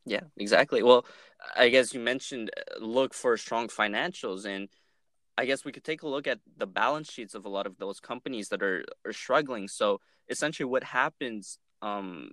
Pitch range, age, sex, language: 105-135 Hz, 20-39, male, English